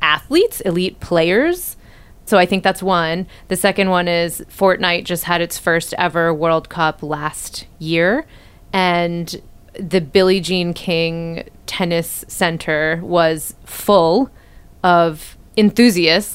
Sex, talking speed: female, 120 wpm